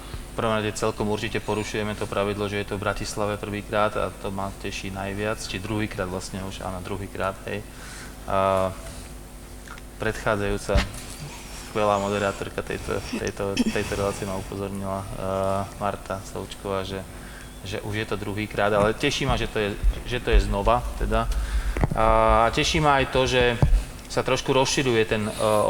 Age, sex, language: 20-39, male, Slovak